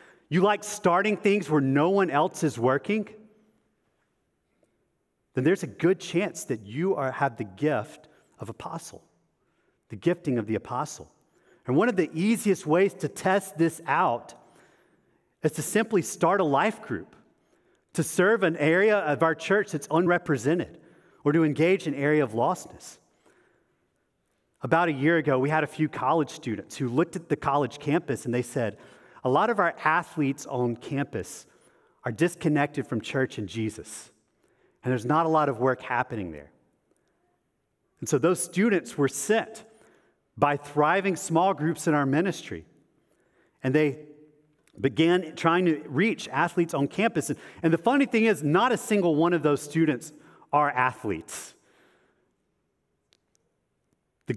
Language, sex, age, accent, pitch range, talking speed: English, male, 40-59, American, 135-175 Hz, 150 wpm